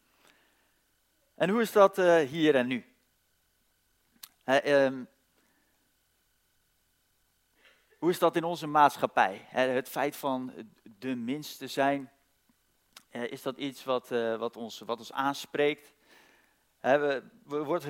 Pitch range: 130-165 Hz